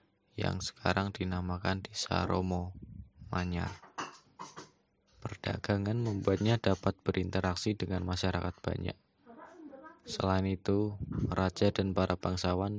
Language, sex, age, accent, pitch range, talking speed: Indonesian, male, 20-39, native, 90-100 Hz, 90 wpm